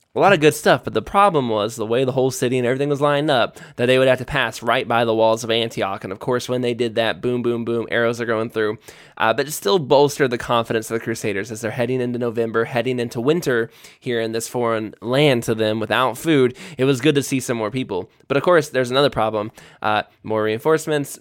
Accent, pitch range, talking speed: American, 115-135 Hz, 250 wpm